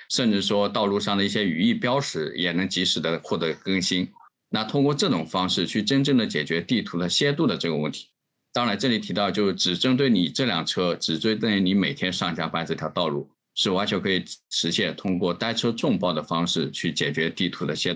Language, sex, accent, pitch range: Chinese, male, native, 90-125 Hz